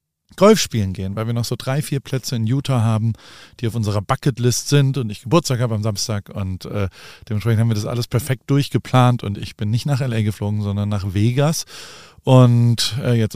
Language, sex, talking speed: German, male, 205 wpm